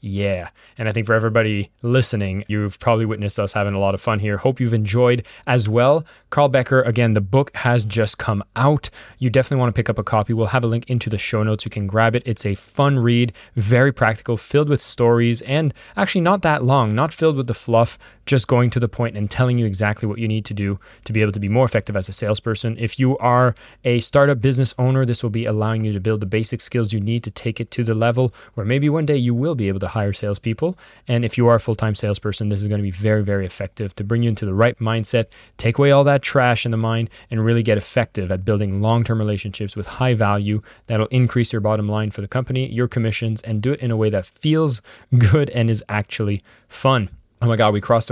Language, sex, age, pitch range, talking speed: English, male, 20-39, 105-125 Hz, 250 wpm